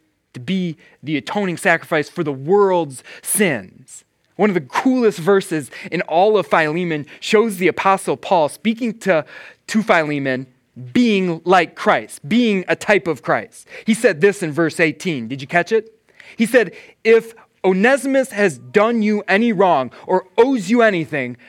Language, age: English, 30-49